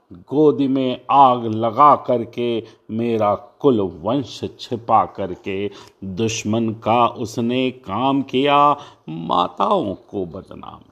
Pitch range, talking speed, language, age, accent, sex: 110-155 Hz, 100 wpm, Hindi, 50-69, native, male